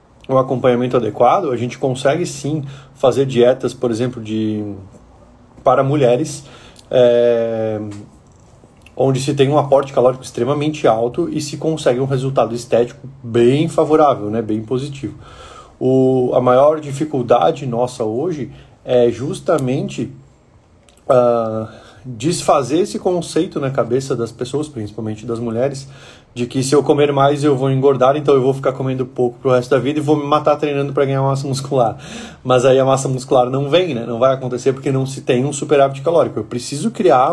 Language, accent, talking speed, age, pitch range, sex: Portuguese, Brazilian, 160 wpm, 20-39, 120-140 Hz, male